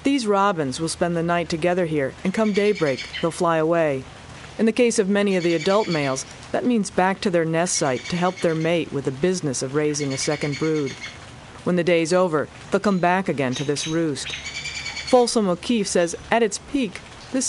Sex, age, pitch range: female, 40-59, 155-210 Hz